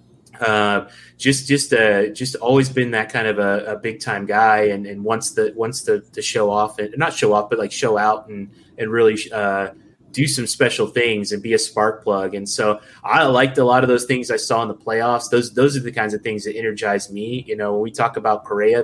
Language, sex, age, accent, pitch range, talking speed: English, male, 20-39, American, 105-130 Hz, 245 wpm